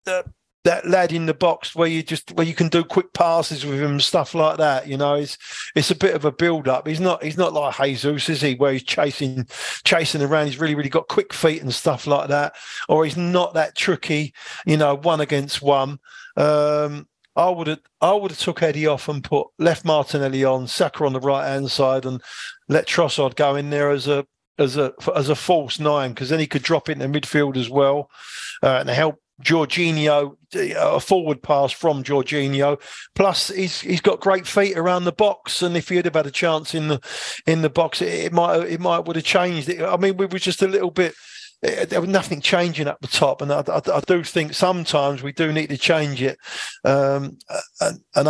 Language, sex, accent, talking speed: English, male, British, 220 wpm